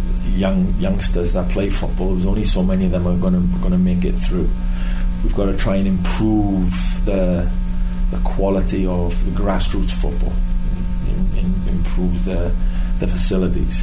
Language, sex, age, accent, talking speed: English, male, 30-49, British, 155 wpm